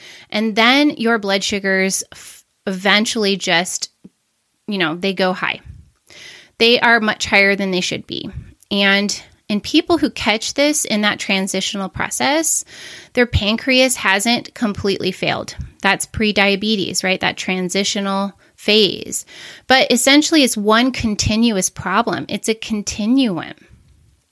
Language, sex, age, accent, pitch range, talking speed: English, female, 20-39, American, 195-245 Hz, 125 wpm